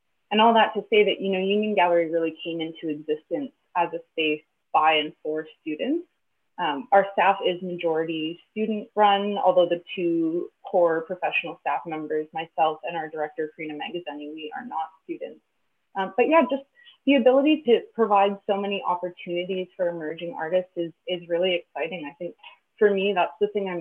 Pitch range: 160-200 Hz